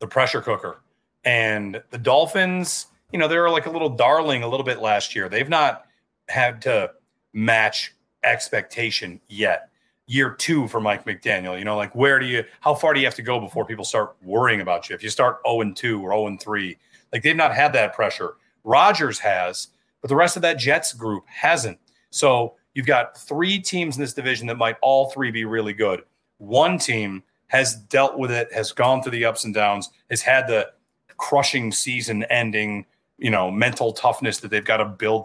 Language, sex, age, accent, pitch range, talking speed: English, male, 30-49, American, 110-135 Hz, 190 wpm